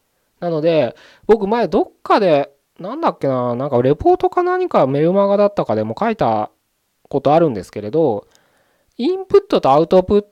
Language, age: Japanese, 20-39